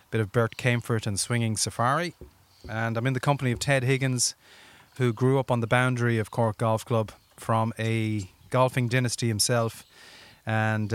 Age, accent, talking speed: 30-49, Irish, 165 wpm